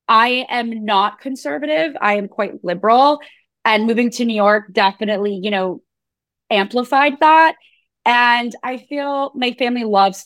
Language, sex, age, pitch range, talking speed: English, female, 20-39, 195-250 Hz, 140 wpm